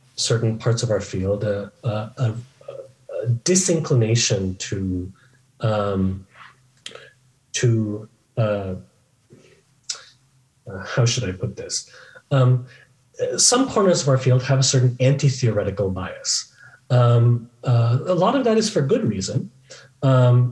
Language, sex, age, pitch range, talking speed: English, male, 30-49, 110-135 Hz, 125 wpm